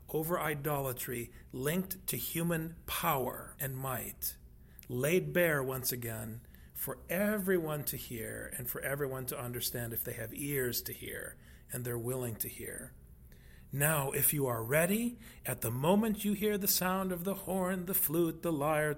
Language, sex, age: English, male, 40-59